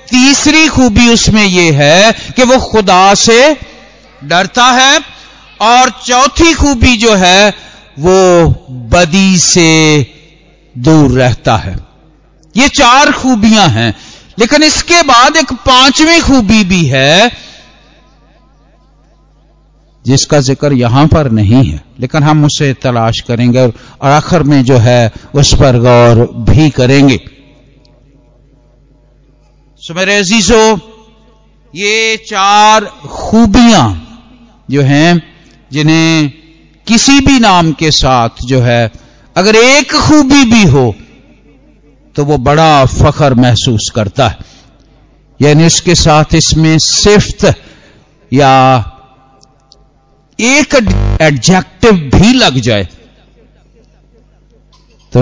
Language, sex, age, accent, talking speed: Hindi, male, 50-69, native, 105 wpm